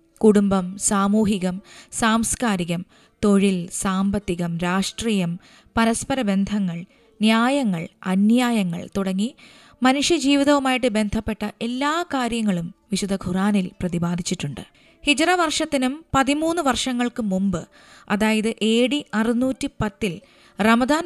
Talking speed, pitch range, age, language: 75 wpm, 195-250 Hz, 20-39, Malayalam